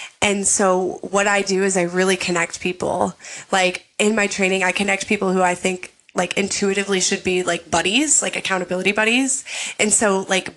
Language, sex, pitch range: English, female, 180-215 Hz